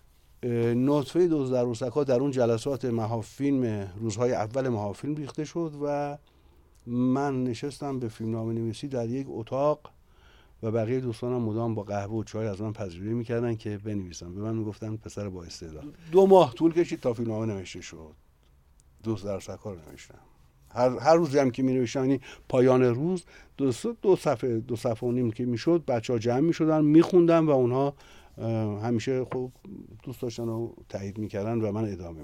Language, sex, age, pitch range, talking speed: Persian, male, 60-79, 105-140 Hz, 165 wpm